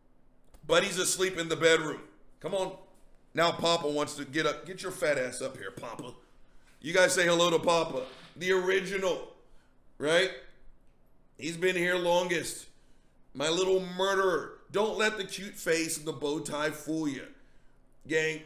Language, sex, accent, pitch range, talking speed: English, male, American, 150-210 Hz, 160 wpm